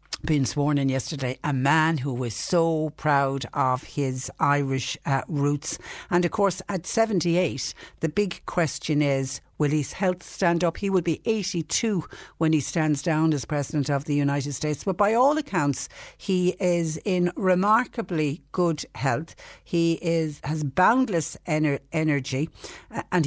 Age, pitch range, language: 60-79, 145-170 Hz, English